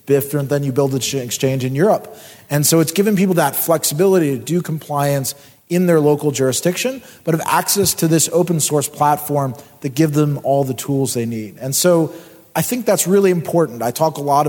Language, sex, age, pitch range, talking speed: English, male, 30-49, 140-175 Hz, 205 wpm